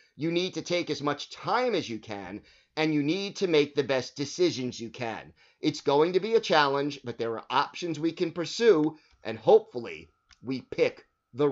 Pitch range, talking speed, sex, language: 135-160 Hz, 200 wpm, male, English